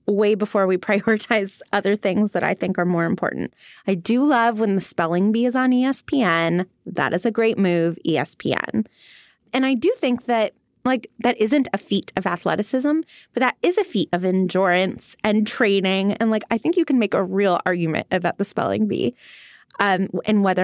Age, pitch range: 20-39, 190-230 Hz